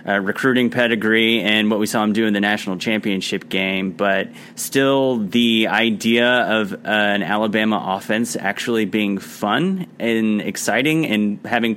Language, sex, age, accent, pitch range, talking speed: English, male, 30-49, American, 105-130 Hz, 155 wpm